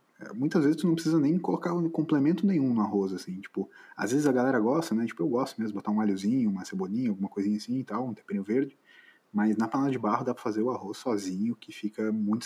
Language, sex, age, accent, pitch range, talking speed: Portuguese, male, 20-39, Brazilian, 105-145 Hz, 245 wpm